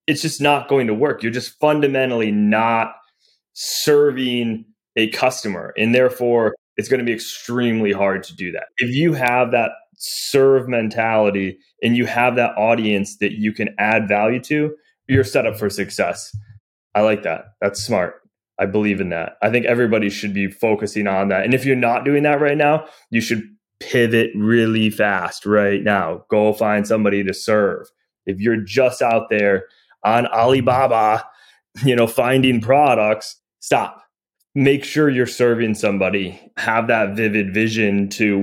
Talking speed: 165 wpm